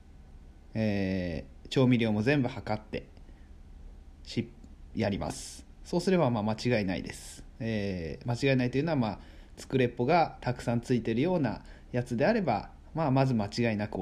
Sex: male